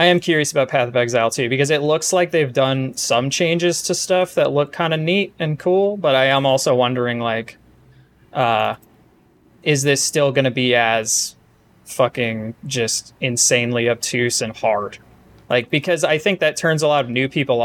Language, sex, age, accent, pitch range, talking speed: English, male, 20-39, American, 120-150 Hz, 190 wpm